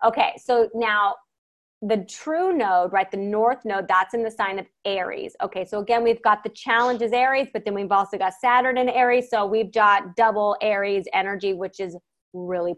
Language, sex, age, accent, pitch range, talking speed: English, female, 30-49, American, 200-245 Hz, 195 wpm